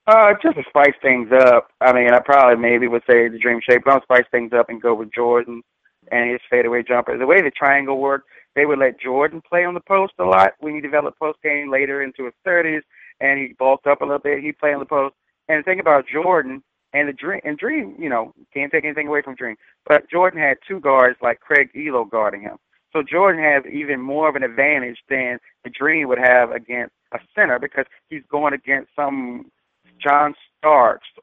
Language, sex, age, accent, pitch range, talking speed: English, male, 30-49, American, 120-150 Hz, 225 wpm